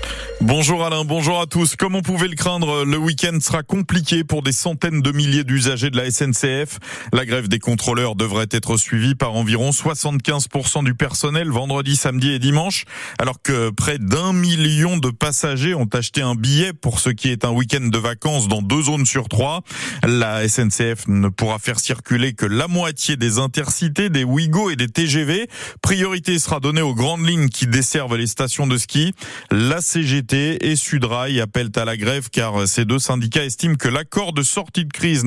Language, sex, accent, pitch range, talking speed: French, male, French, 125-160 Hz, 185 wpm